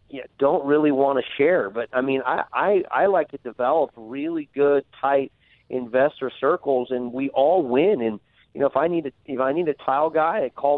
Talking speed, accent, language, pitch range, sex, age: 215 wpm, American, English, 115-145 Hz, male, 40-59